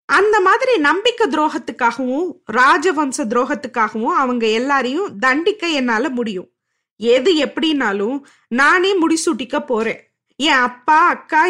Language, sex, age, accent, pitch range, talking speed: Tamil, female, 20-39, native, 250-365 Hz, 105 wpm